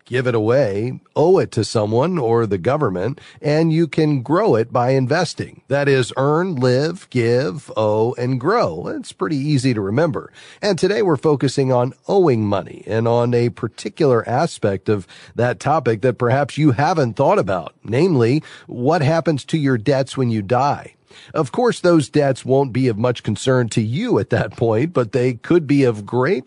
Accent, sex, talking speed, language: American, male, 180 wpm, English